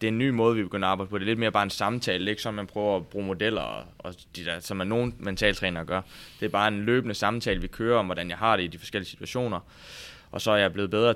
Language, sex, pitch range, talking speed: Danish, male, 95-110 Hz, 305 wpm